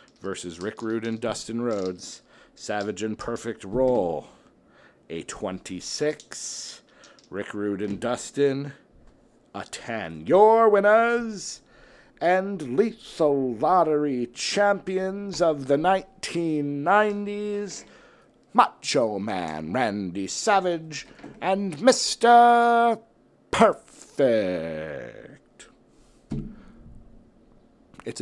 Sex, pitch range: male, 110-170 Hz